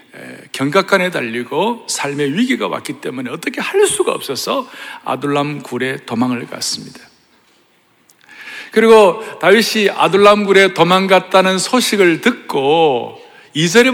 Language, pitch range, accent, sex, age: Korean, 180-255 Hz, native, male, 60-79